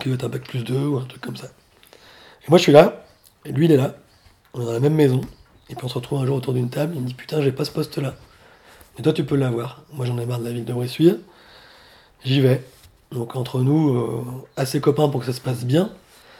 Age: 30-49